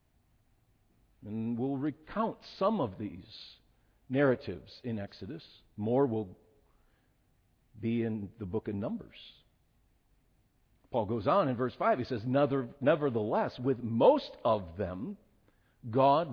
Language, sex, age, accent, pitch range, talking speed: English, male, 50-69, American, 105-140 Hz, 115 wpm